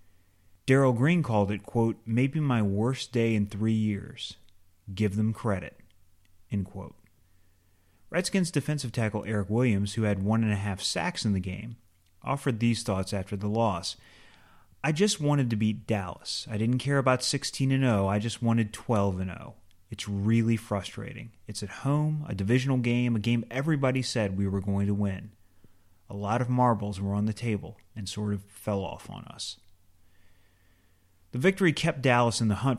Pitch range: 95-120 Hz